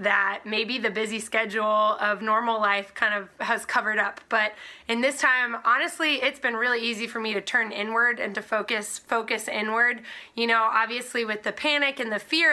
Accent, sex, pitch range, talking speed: American, female, 215-260 Hz, 195 wpm